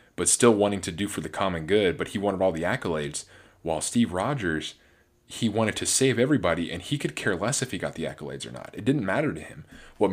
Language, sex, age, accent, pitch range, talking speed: English, male, 20-39, American, 85-105 Hz, 245 wpm